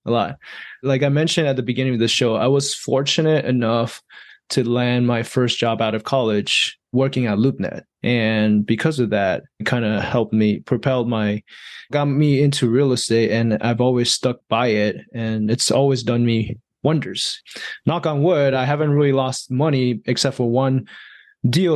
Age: 20-39